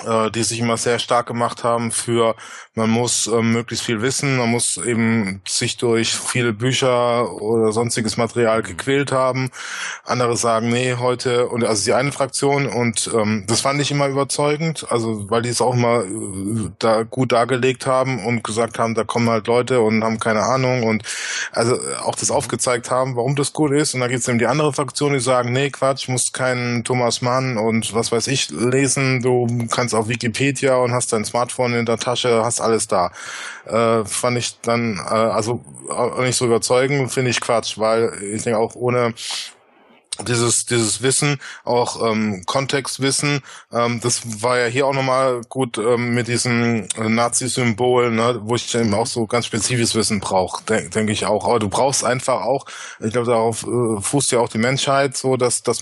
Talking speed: 190 wpm